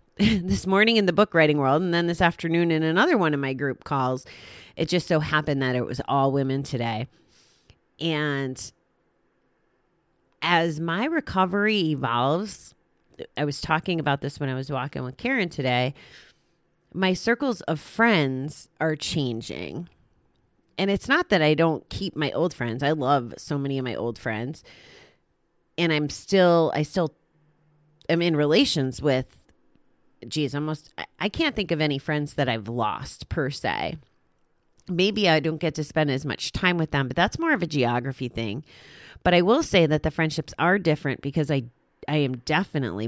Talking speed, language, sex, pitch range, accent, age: 170 wpm, English, female, 140-175 Hz, American, 30-49